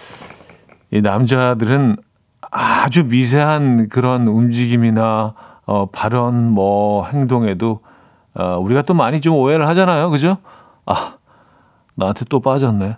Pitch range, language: 105-150 Hz, Korean